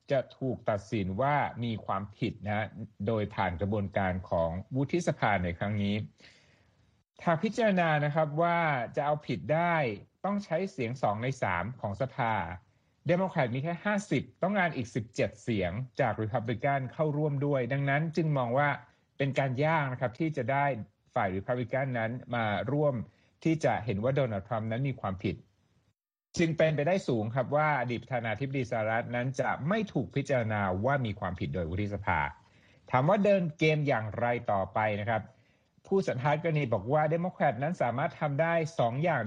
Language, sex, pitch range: Thai, male, 110-150 Hz